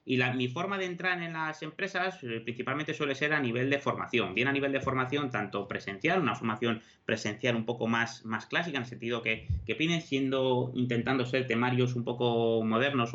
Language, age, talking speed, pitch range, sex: Spanish, 30-49, 205 wpm, 115-140 Hz, male